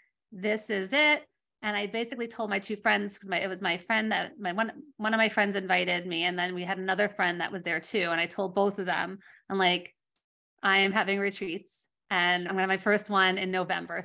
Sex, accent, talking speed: female, American, 235 wpm